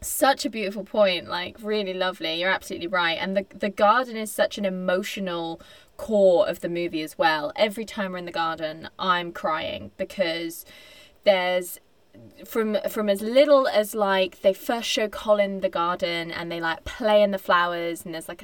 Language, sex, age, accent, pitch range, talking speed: English, female, 20-39, British, 180-220 Hz, 180 wpm